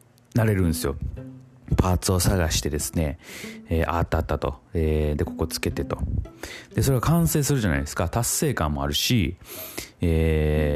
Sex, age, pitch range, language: male, 30-49, 80-115 Hz, Japanese